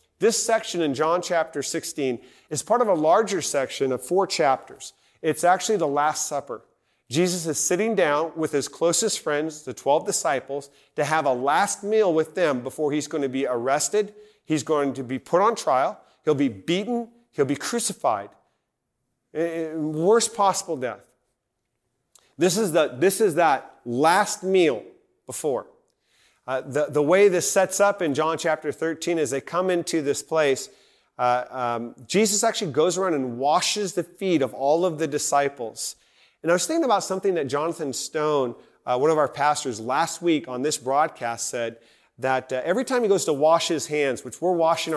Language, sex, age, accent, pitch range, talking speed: English, male, 40-59, American, 130-180 Hz, 180 wpm